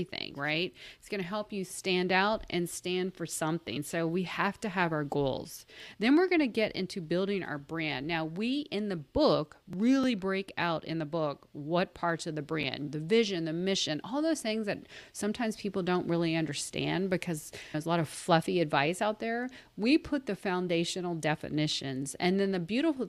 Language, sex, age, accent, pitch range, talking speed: English, female, 40-59, American, 160-205 Hz, 190 wpm